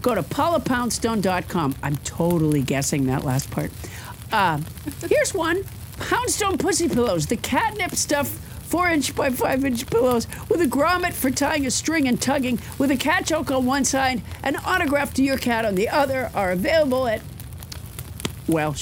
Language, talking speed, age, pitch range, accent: English, 160 wpm, 50-69, 230-320 Hz, American